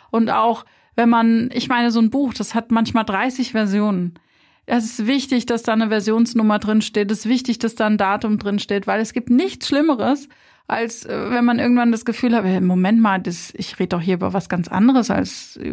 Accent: German